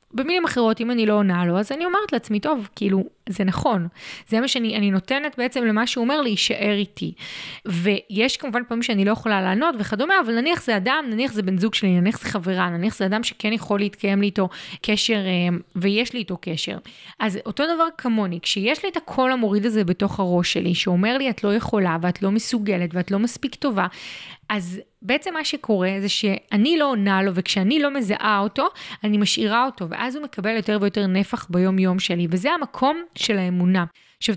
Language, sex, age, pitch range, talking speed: Hebrew, female, 20-39, 195-260 Hz, 195 wpm